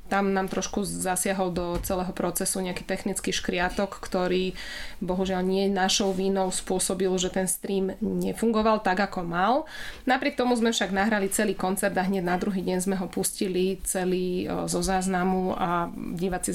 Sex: female